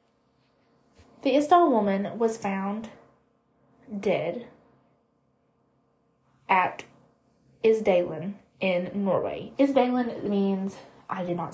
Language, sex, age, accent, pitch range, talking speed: English, female, 20-39, American, 185-245 Hz, 80 wpm